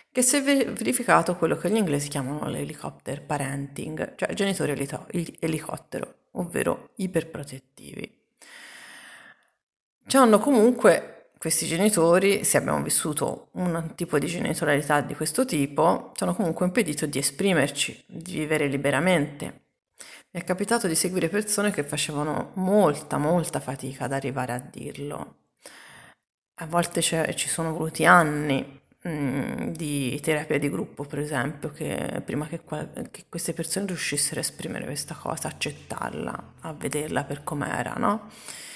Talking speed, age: 135 wpm, 30-49